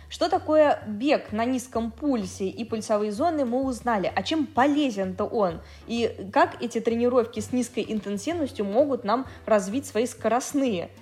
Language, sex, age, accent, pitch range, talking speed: Russian, female, 20-39, native, 210-275 Hz, 145 wpm